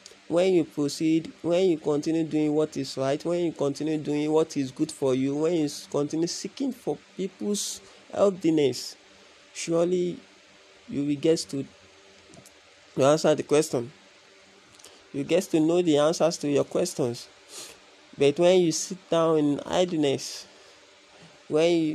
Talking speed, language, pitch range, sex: 140 wpm, English, 135-170 Hz, male